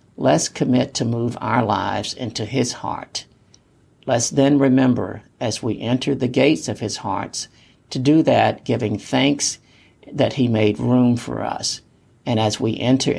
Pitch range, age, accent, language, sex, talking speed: 105-125 Hz, 50-69, American, English, male, 160 wpm